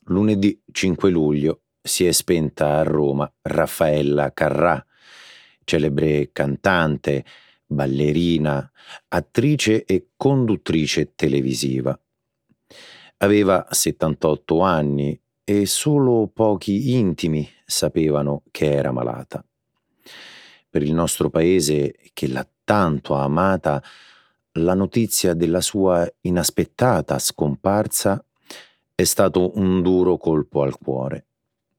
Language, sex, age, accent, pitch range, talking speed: Italian, male, 40-59, native, 75-105 Hz, 95 wpm